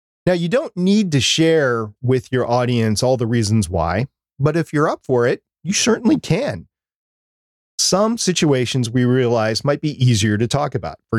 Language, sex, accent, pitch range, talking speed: English, male, American, 105-150 Hz, 175 wpm